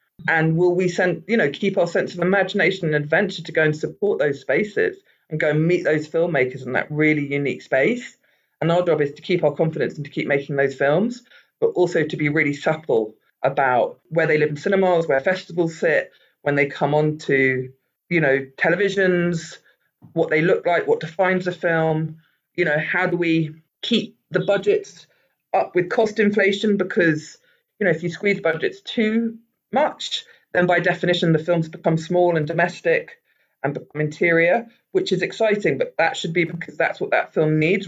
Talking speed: 190 wpm